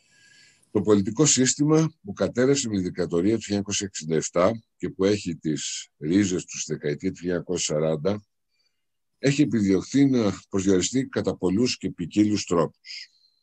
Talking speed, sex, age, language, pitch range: 125 wpm, male, 60-79, Greek, 90-120 Hz